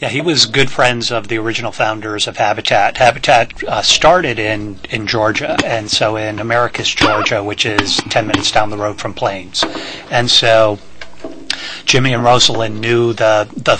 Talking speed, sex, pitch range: 170 wpm, male, 110-125 Hz